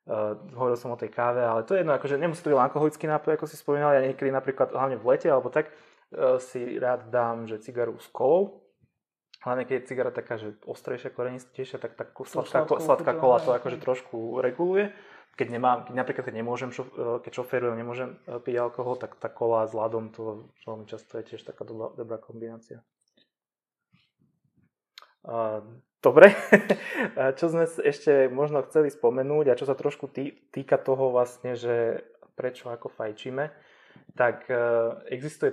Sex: male